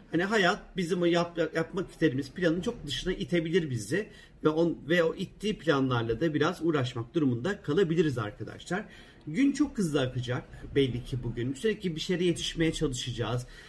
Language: Turkish